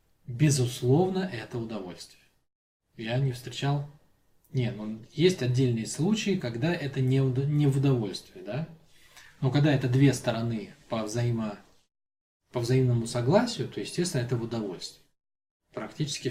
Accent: native